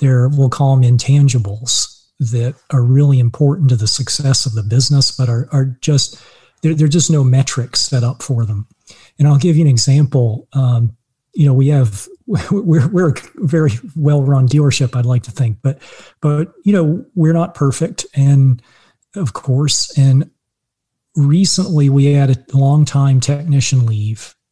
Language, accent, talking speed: English, American, 170 wpm